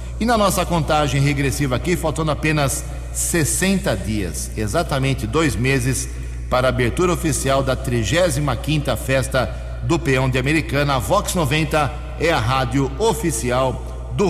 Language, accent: English, Brazilian